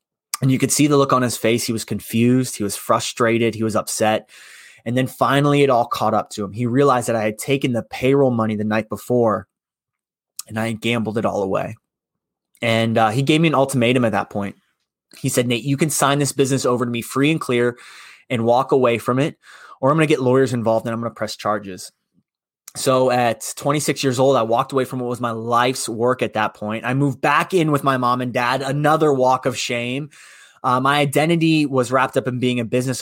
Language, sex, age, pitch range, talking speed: English, male, 20-39, 115-140 Hz, 235 wpm